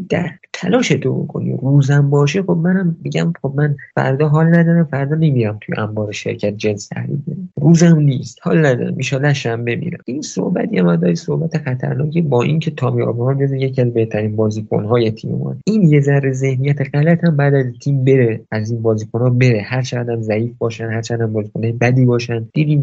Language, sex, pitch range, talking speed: Persian, male, 120-155 Hz, 185 wpm